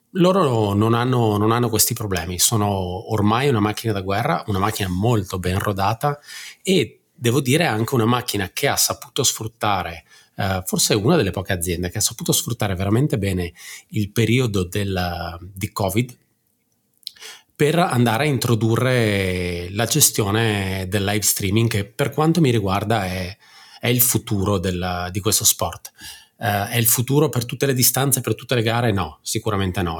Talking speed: 165 wpm